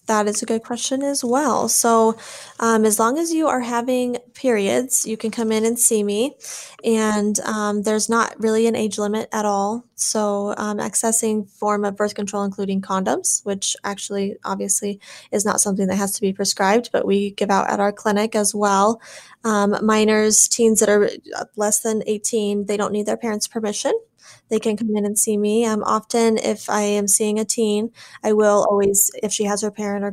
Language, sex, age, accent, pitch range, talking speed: English, female, 10-29, American, 200-230 Hz, 200 wpm